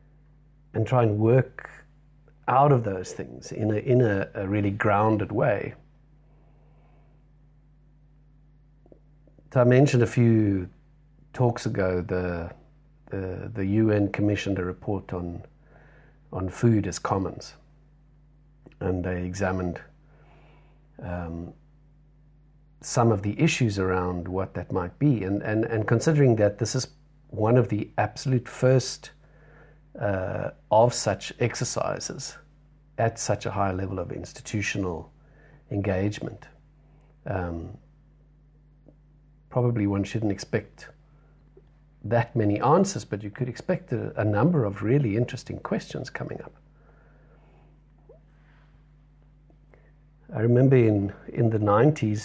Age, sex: 50-69, male